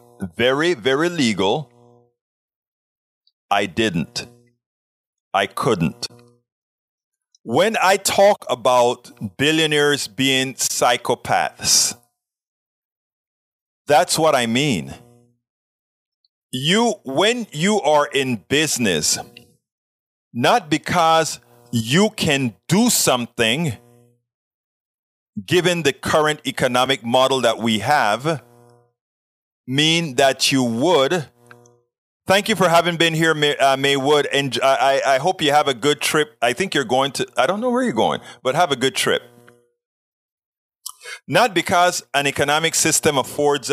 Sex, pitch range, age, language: male, 120-160 Hz, 40-59, English